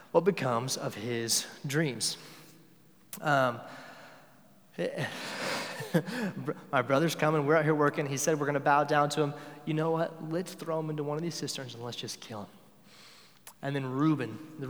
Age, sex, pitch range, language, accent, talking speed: 30-49, male, 140-170 Hz, English, American, 170 wpm